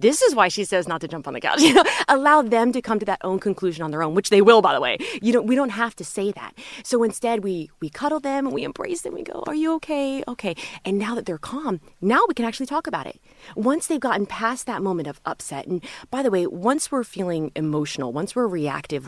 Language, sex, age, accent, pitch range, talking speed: English, female, 20-39, American, 165-245 Hz, 265 wpm